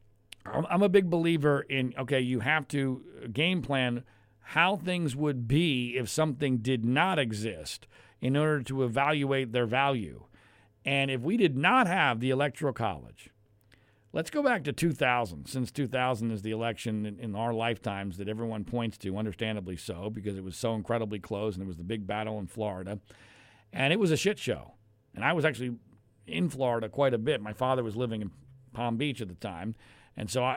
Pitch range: 110-145 Hz